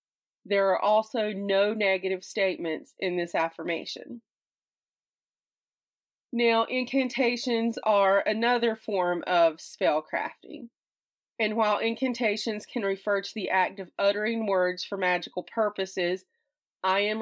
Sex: female